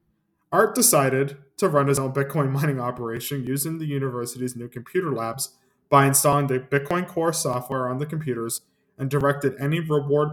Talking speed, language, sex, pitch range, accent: 165 wpm, English, male, 125-150 Hz, American